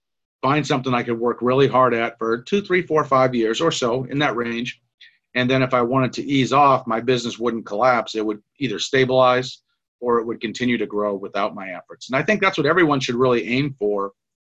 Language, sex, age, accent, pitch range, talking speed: English, male, 40-59, American, 115-135 Hz, 225 wpm